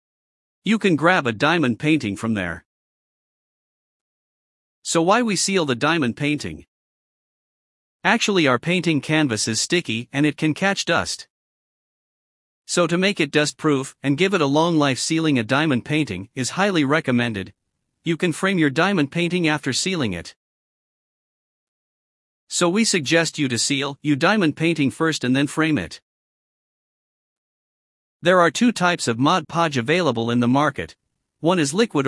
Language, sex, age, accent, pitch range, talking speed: English, male, 50-69, American, 130-175 Hz, 155 wpm